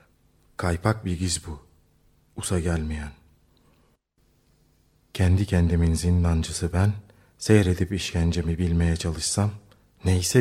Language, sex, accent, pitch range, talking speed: Turkish, male, native, 85-120 Hz, 85 wpm